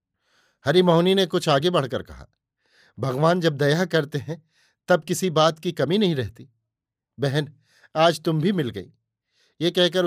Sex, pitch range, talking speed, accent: male, 135-180 Hz, 155 wpm, native